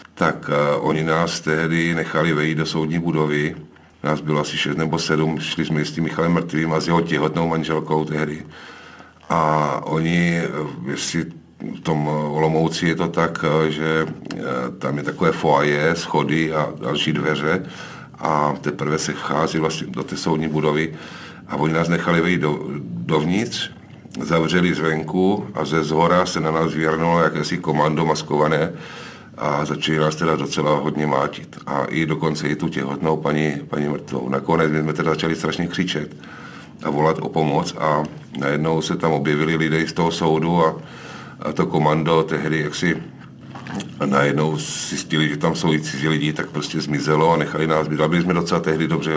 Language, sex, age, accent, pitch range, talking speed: Czech, male, 50-69, native, 75-80 Hz, 165 wpm